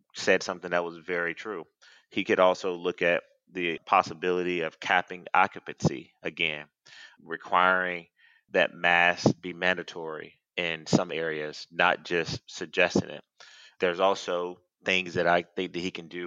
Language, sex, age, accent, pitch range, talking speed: English, male, 30-49, American, 85-95 Hz, 145 wpm